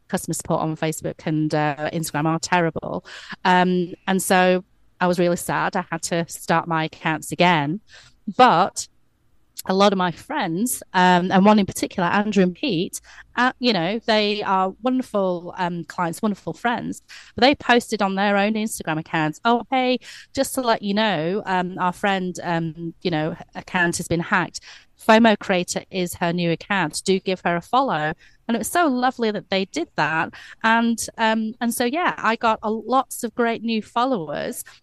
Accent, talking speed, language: British, 180 wpm, English